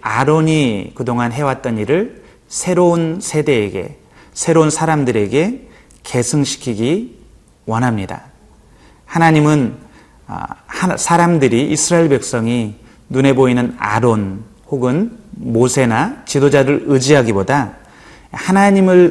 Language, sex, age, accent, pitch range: Korean, male, 30-49, native, 115-150 Hz